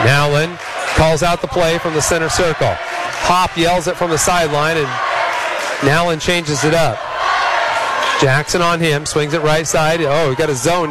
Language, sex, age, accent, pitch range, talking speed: English, male, 40-59, American, 140-170 Hz, 175 wpm